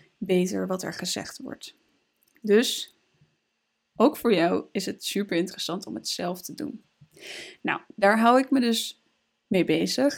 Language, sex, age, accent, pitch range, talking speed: Dutch, female, 20-39, Dutch, 190-250 Hz, 155 wpm